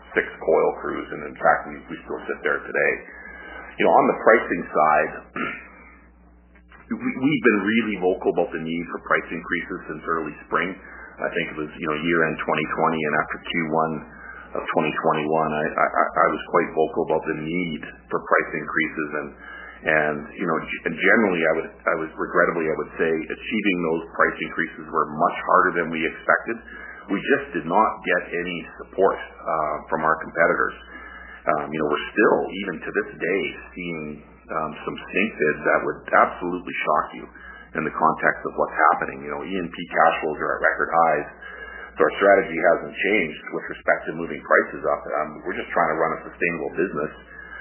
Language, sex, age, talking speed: English, male, 40-59, 180 wpm